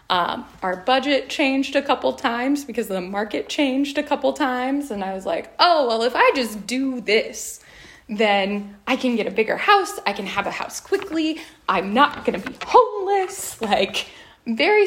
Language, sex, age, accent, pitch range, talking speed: English, female, 10-29, American, 205-270 Hz, 185 wpm